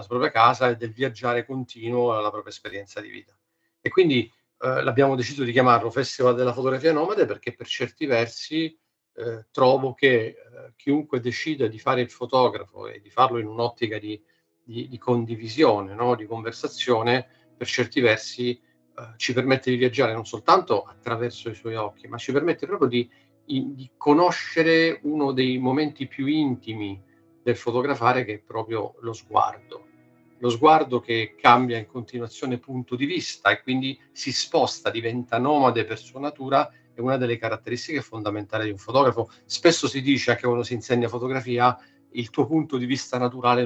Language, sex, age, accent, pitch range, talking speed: Italian, male, 50-69, native, 115-135 Hz, 170 wpm